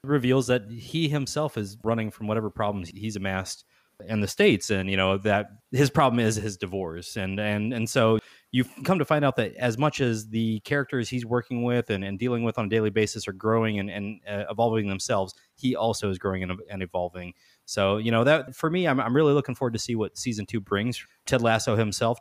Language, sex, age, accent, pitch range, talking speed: English, male, 30-49, American, 105-125 Hz, 225 wpm